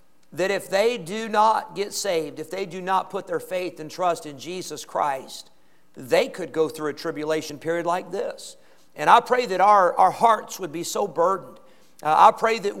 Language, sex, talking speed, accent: English, male, 200 wpm, American